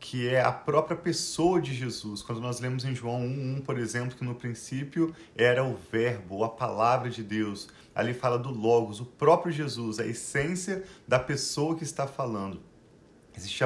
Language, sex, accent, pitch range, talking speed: Portuguese, male, Brazilian, 115-140 Hz, 175 wpm